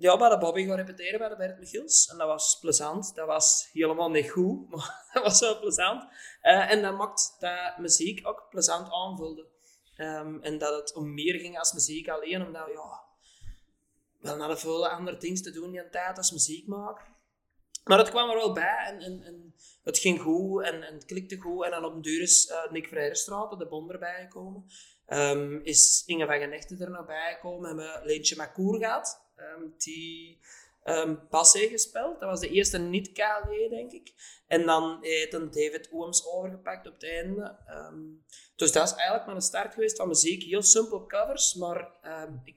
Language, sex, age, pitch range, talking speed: Dutch, male, 20-39, 155-195 Hz, 195 wpm